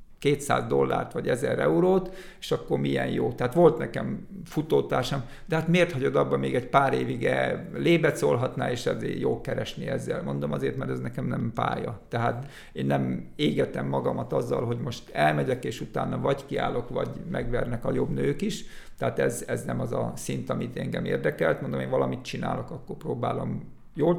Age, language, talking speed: 50-69, Hungarian, 180 wpm